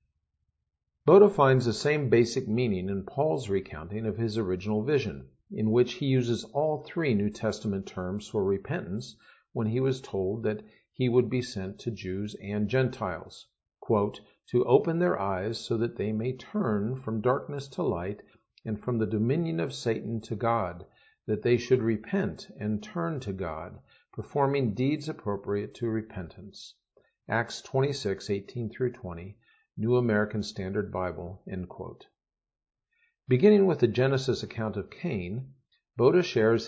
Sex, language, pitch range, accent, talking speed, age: male, English, 105-130 Hz, American, 140 wpm, 50-69